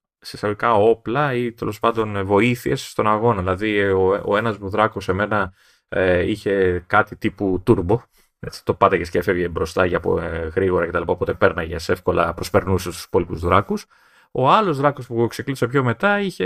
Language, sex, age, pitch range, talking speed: Greek, male, 30-49, 100-140 Hz, 160 wpm